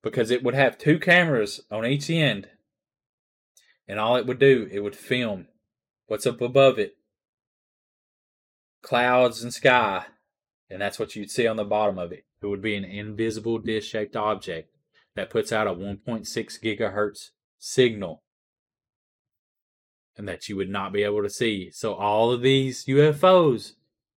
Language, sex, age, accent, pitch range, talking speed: English, male, 20-39, American, 105-130 Hz, 155 wpm